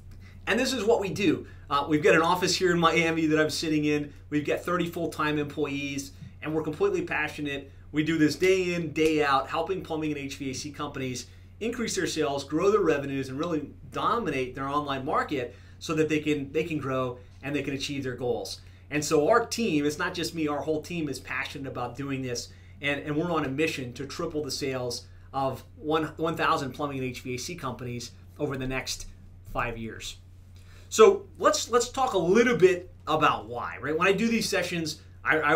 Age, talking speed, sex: 30-49, 195 wpm, male